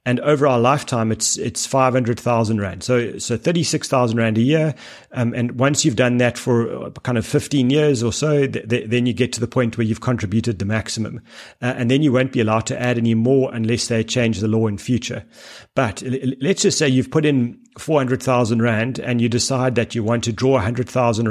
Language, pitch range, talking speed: English, 115-130 Hz, 220 wpm